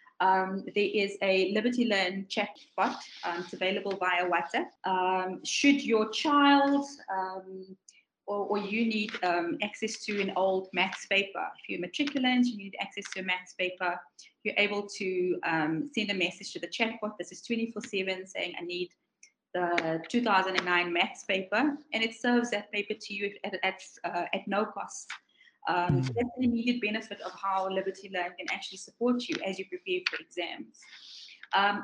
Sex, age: female, 20-39